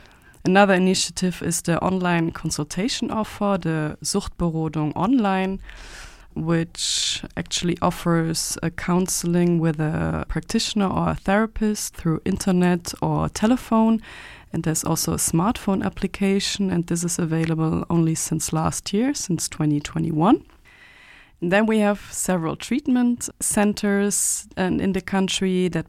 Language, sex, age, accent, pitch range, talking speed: English, female, 20-39, German, 165-200 Hz, 120 wpm